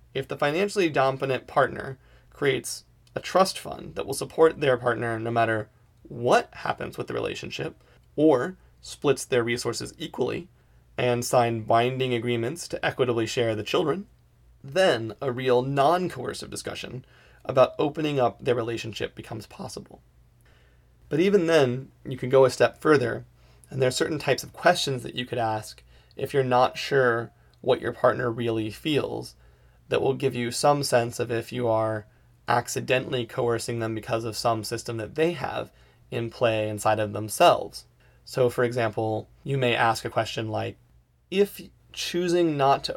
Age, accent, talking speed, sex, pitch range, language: 30-49, American, 160 wpm, male, 110-135 Hz, English